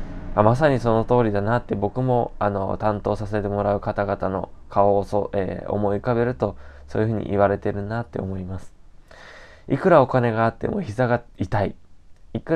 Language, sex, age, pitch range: Japanese, male, 20-39, 95-115 Hz